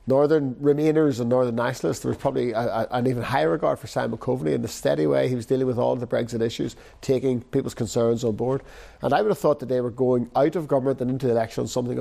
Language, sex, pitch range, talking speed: English, male, 115-140 Hz, 250 wpm